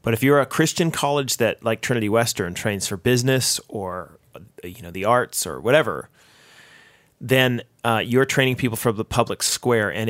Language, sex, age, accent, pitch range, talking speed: English, male, 30-49, American, 105-125 Hz, 180 wpm